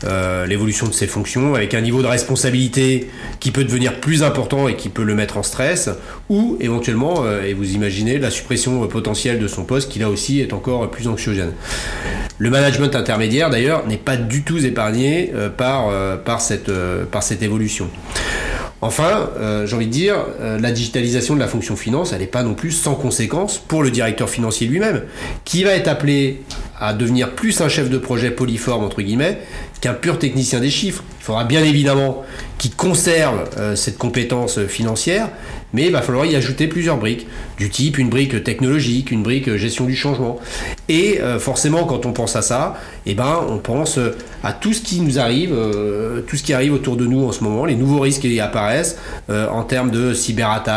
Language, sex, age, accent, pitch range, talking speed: French, male, 30-49, French, 110-135 Hz, 205 wpm